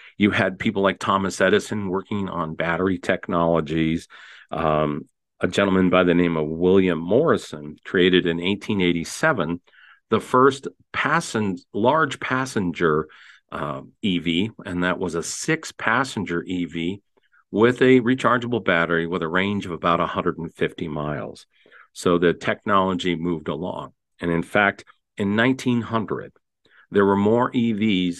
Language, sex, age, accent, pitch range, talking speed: English, male, 50-69, American, 85-110 Hz, 125 wpm